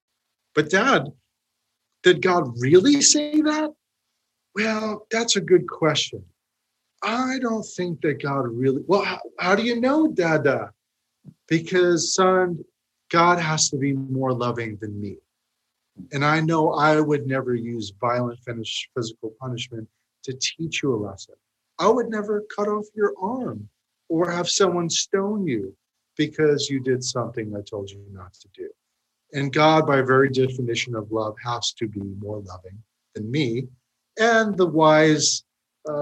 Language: English